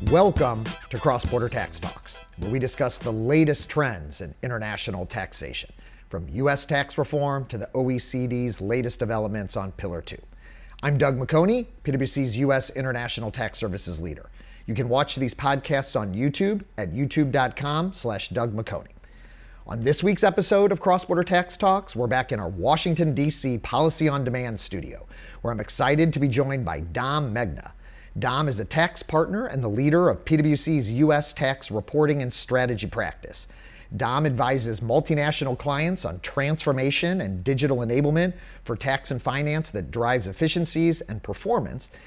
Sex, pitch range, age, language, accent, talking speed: male, 110-150 Hz, 40-59, English, American, 150 wpm